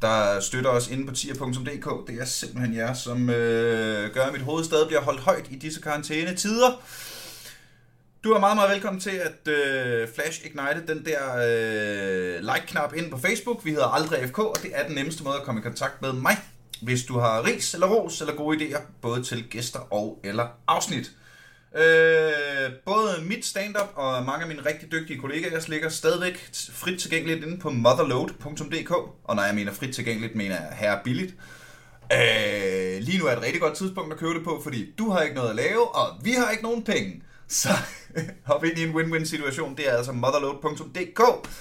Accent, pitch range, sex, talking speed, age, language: native, 130-180 Hz, male, 190 wpm, 30-49, Danish